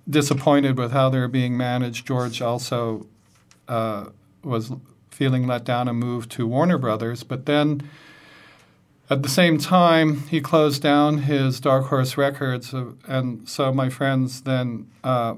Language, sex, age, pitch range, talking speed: English, male, 50-69, 125-145 Hz, 150 wpm